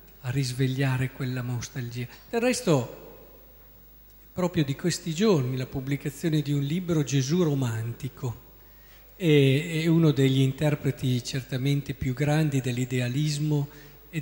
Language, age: Italian, 50-69